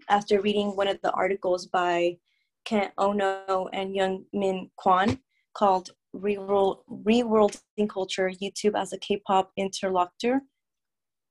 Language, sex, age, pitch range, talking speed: English, female, 20-39, 185-205 Hz, 110 wpm